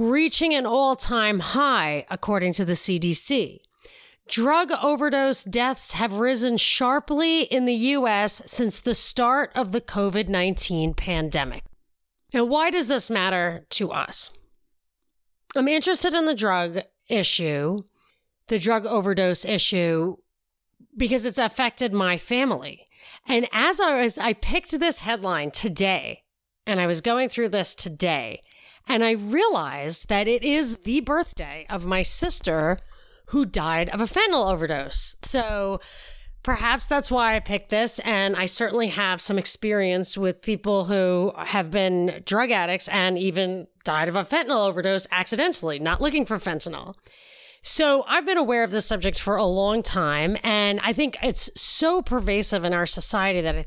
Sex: female